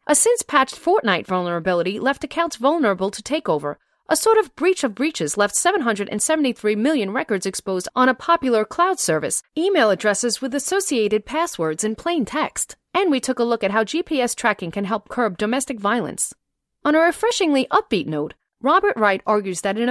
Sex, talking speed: female, 170 wpm